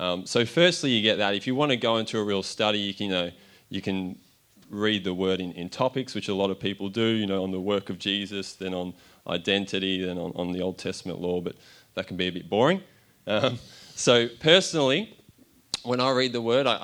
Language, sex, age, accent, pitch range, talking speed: English, male, 20-39, Australian, 100-125 Hz, 225 wpm